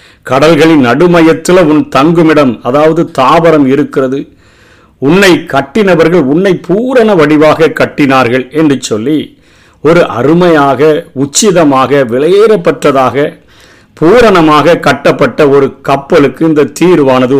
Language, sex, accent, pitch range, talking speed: Tamil, male, native, 130-165 Hz, 85 wpm